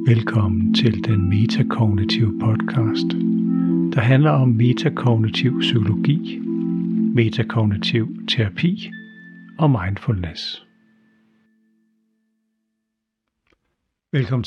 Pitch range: 110-155 Hz